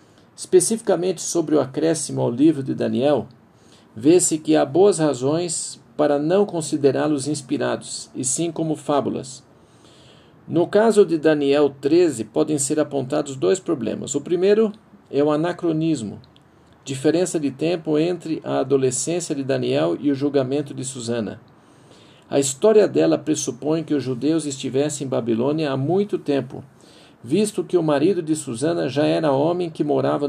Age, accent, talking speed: 50-69, Brazilian, 145 wpm